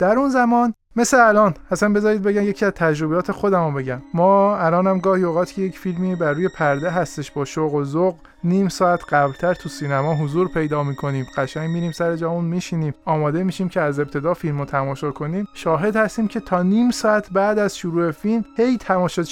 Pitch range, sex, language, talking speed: 155-205 Hz, male, Persian, 190 wpm